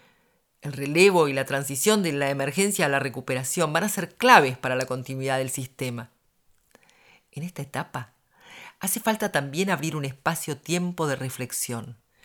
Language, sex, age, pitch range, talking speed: Spanish, female, 40-59, 130-175 Hz, 150 wpm